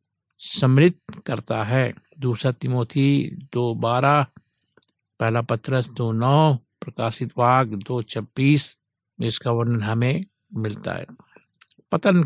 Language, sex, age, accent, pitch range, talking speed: Hindi, male, 60-79, native, 120-150 Hz, 110 wpm